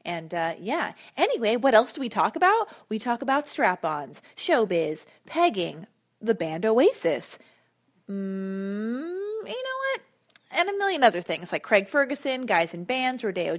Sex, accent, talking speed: female, American, 155 wpm